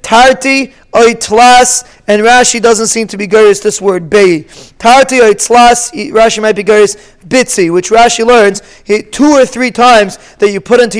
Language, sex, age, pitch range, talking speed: English, male, 20-39, 205-240 Hz, 165 wpm